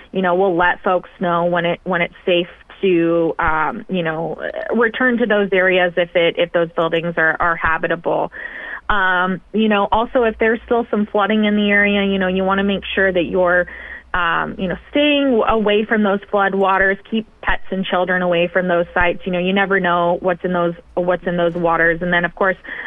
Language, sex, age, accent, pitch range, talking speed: English, female, 20-39, American, 175-205 Hz, 215 wpm